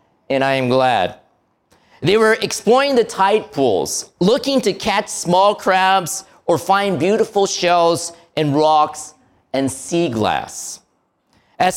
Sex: male